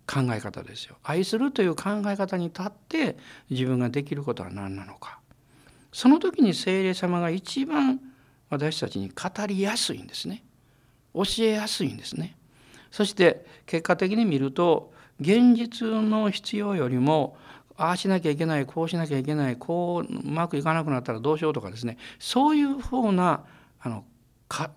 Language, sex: Japanese, male